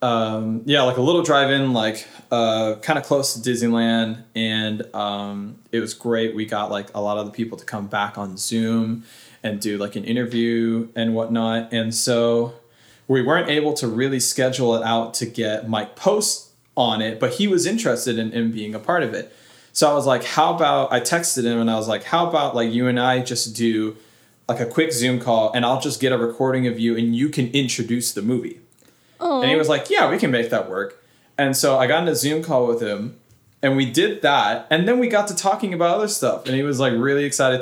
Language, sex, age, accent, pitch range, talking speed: English, male, 20-39, American, 115-135 Hz, 230 wpm